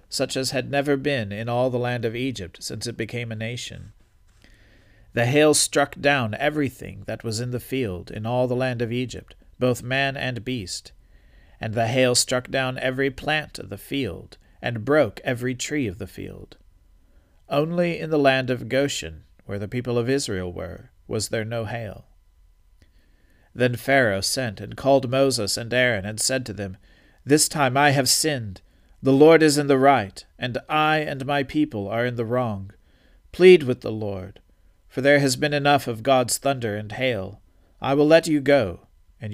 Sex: male